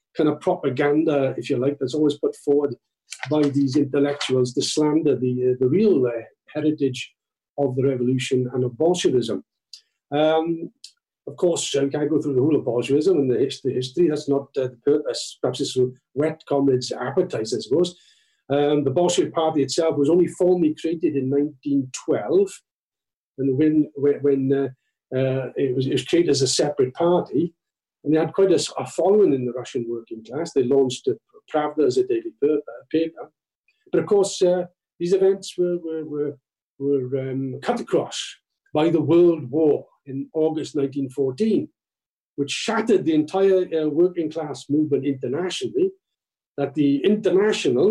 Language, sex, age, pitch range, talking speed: English, male, 50-69, 135-175 Hz, 170 wpm